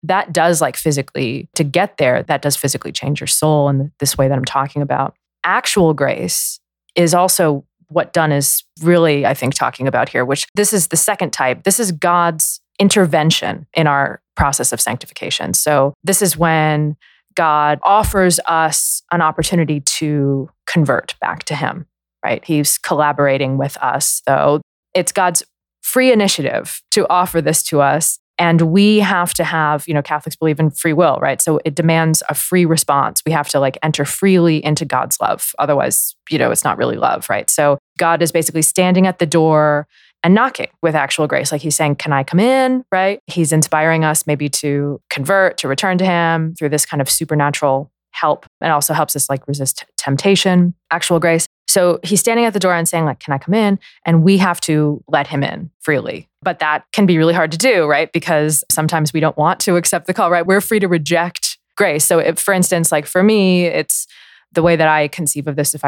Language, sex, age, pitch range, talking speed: English, female, 20-39, 145-175 Hz, 200 wpm